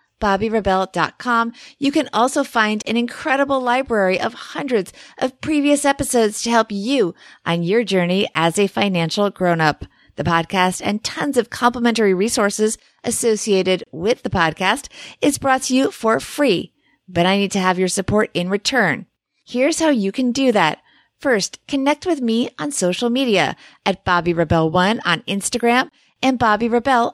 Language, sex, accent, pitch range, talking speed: English, female, American, 190-245 Hz, 155 wpm